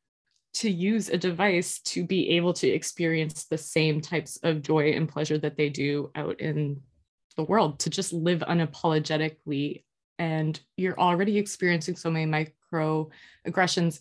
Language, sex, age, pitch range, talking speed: English, female, 20-39, 155-180 Hz, 145 wpm